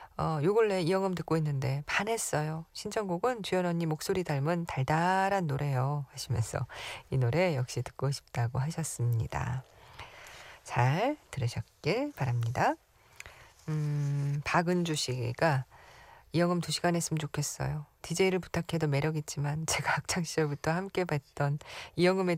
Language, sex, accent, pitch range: Korean, female, native, 130-175 Hz